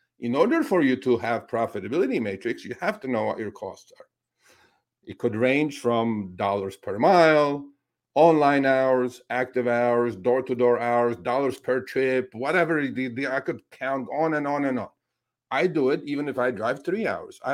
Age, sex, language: 50-69, male, English